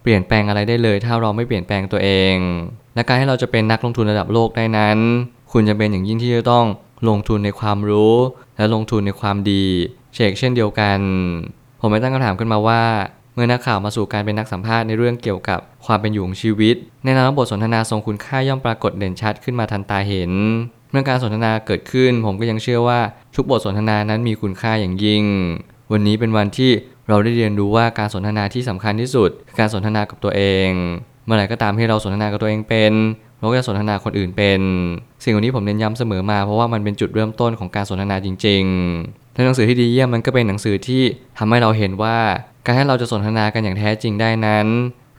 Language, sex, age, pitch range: Thai, male, 20-39, 105-120 Hz